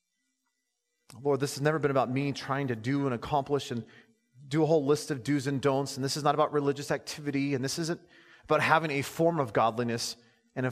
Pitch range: 120-165 Hz